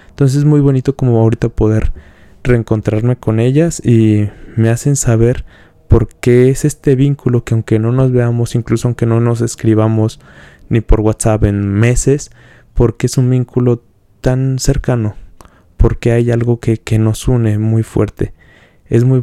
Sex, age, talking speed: male, 20-39, 160 wpm